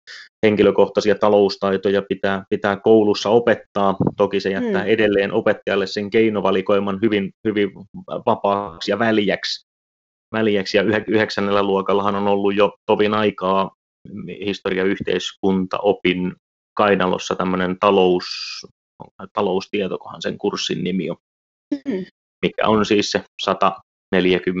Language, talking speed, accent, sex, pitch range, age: Finnish, 100 wpm, native, male, 95-105 Hz, 30-49